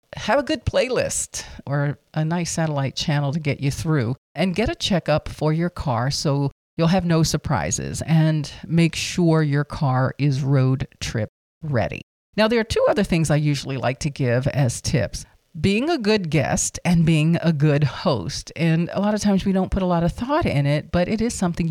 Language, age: English, 50-69